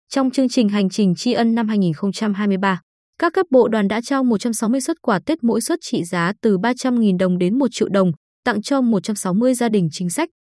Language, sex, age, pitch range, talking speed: Vietnamese, female, 20-39, 190-255 Hz, 215 wpm